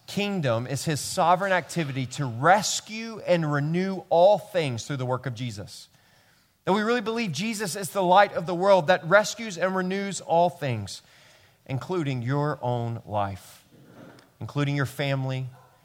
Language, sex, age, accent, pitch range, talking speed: English, male, 30-49, American, 125-180 Hz, 150 wpm